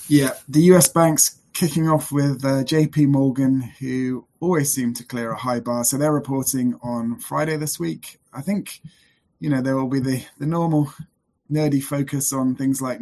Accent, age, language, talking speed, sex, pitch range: British, 20-39, English, 185 wpm, male, 125-150 Hz